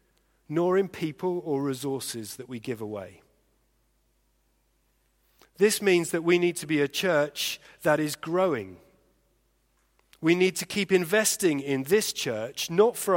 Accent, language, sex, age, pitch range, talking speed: British, English, male, 40-59, 130-185 Hz, 140 wpm